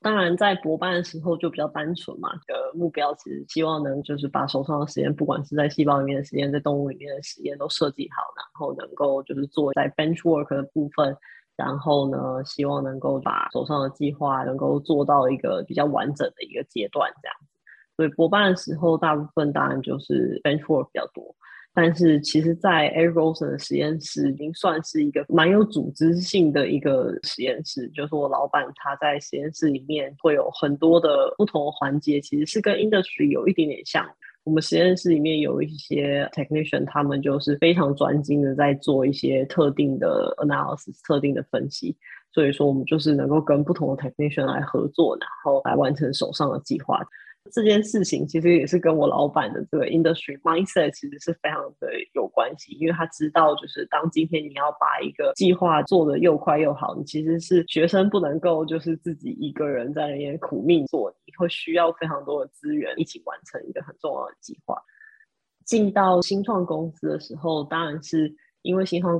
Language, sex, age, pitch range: Chinese, female, 20-39, 145-175 Hz